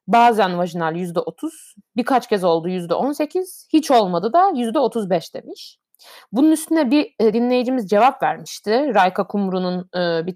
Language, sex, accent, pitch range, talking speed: Turkish, female, native, 175-235 Hz, 120 wpm